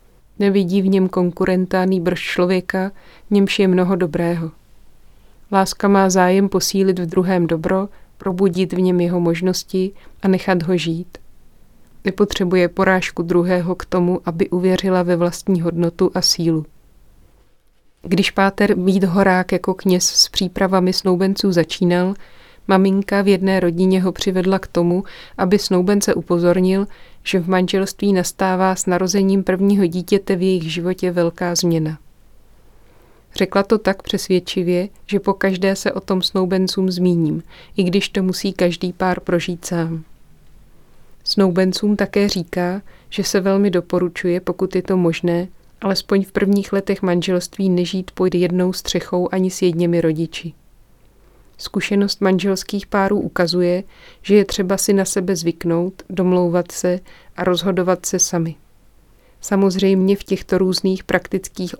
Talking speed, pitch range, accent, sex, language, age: 135 wpm, 180-195 Hz, native, female, Czech, 30-49